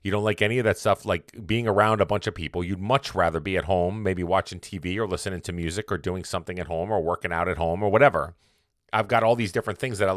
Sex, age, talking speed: male, 40-59, 275 wpm